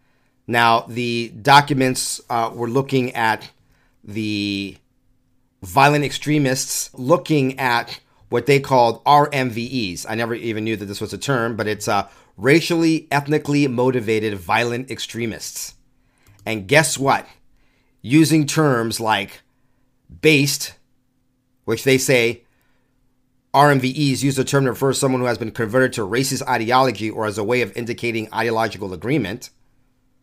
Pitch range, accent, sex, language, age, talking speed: 110-130 Hz, American, male, English, 40-59, 130 wpm